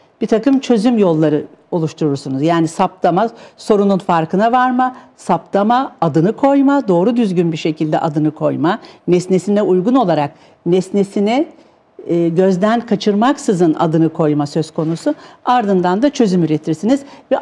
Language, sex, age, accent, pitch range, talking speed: Turkish, female, 60-79, native, 170-235 Hz, 115 wpm